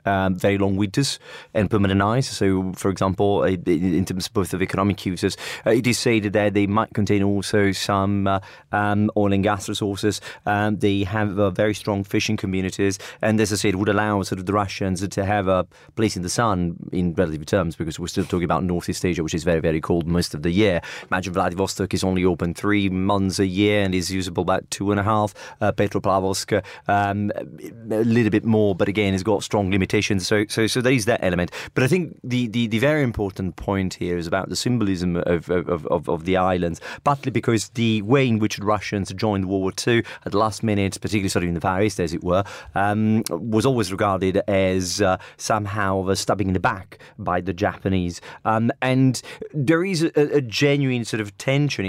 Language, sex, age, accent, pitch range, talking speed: English, male, 30-49, British, 95-110 Hz, 215 wpm